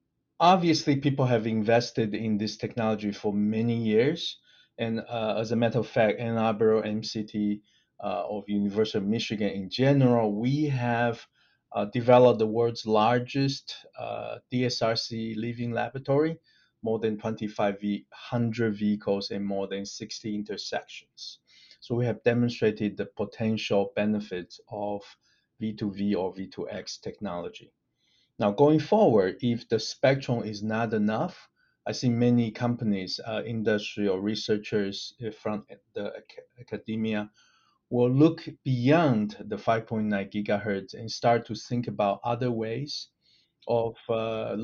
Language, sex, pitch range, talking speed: English, male, 105-120 Hz, 125 wpm